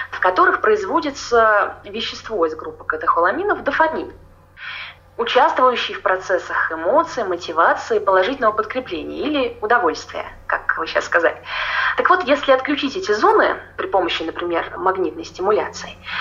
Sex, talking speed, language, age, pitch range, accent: female, 120 wpm, Russian, 20-39, 215-305 Hz, native